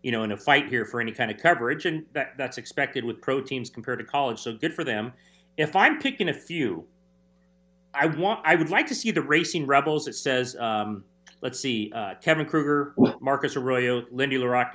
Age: 40-59